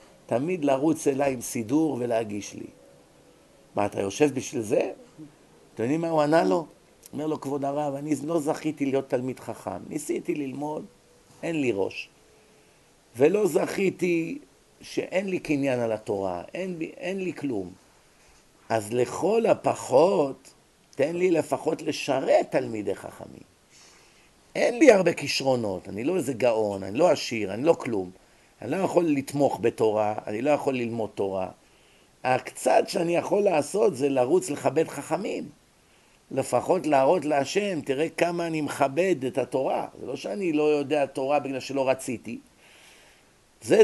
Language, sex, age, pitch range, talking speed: Hebrew, male, 50-69, 125-160 Hz, 145 wpm